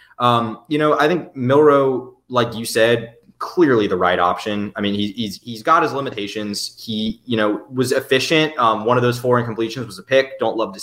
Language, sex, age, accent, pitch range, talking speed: English, male, 20-39, American, 105-140 Hz, 210 wpm